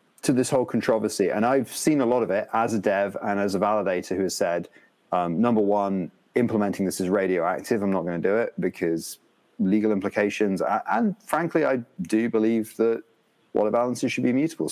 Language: English